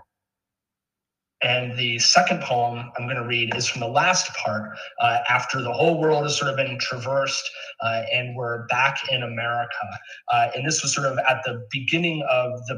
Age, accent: 30-49, American